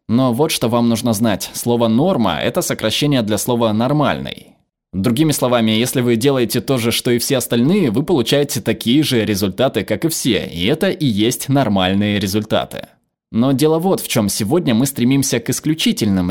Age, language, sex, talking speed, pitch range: 20-39, Russian, male, 175 wpm, 105-135 Hz